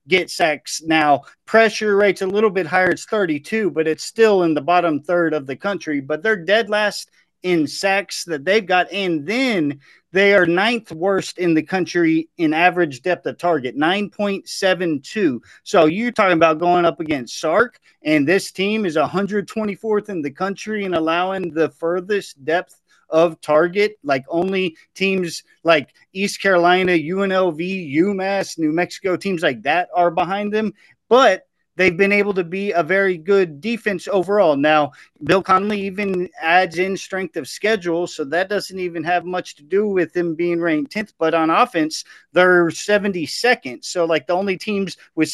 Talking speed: 170 wpm